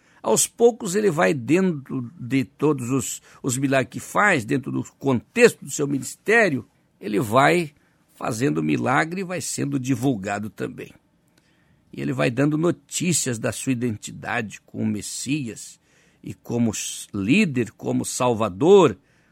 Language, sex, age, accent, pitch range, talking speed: Portuguese, male, 60-79, Brazilian, 125-170 Hz, 135 wpm